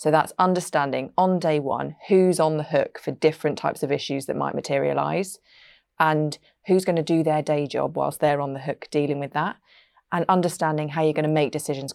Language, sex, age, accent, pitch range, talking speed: English, female, 20-39, British, 145-165 Hz, 210 wpm